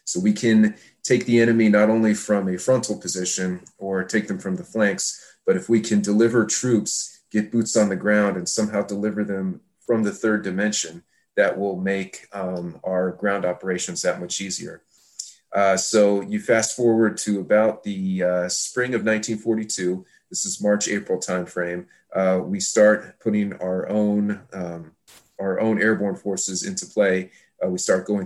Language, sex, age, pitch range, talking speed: English, male, 30-49, 95-110 Hz, 170 wpm